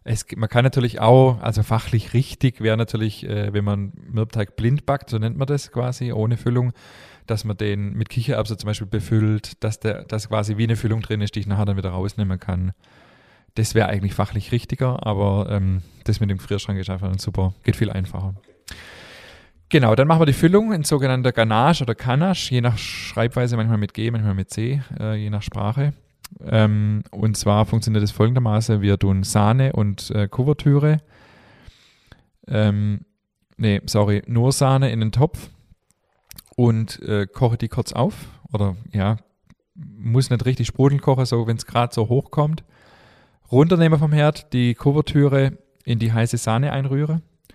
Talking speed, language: 175 wpm, German